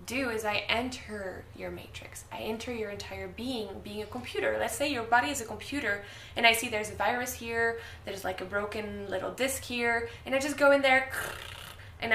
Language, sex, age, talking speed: English, female, 10-29, 205 wpm